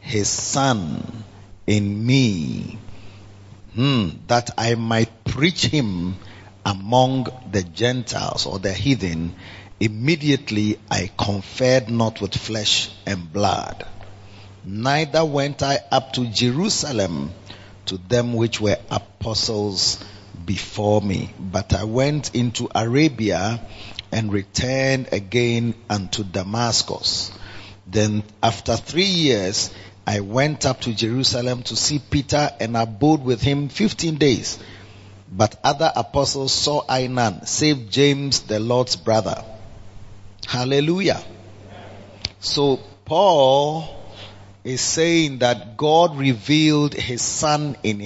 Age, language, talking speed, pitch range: 40-59, English, 110 wpm, 100-135 Hz